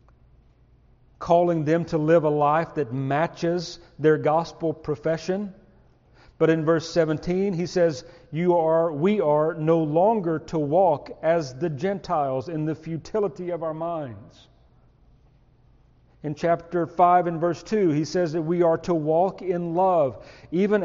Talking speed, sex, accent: 145 wpm, male, American